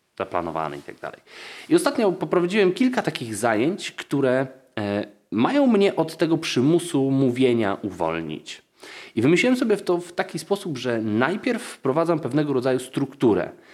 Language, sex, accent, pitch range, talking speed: Polish, male, native, 120-175 Hz, 135 wpm